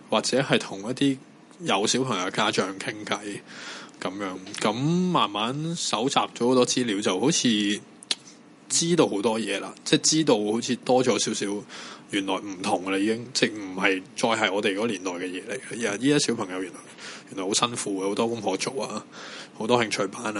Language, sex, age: Chinese, male, 20-39